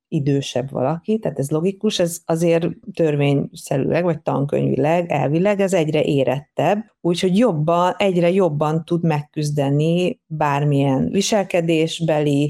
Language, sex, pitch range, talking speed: Hungarian, female, 145-175 Hz, 105 wpm